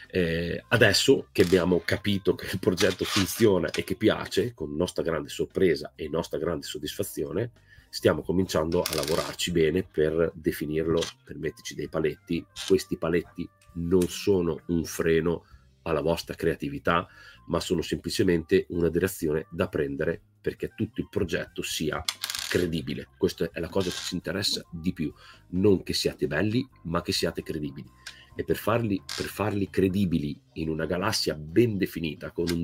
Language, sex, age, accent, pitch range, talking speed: Italian, male, 40-59, native, 85-100 Hz, 155 wpm